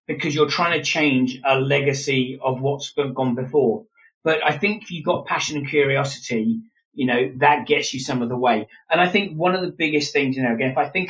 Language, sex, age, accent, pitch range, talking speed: English, male, 30-49, British, 130-155 Hz, 230 wpm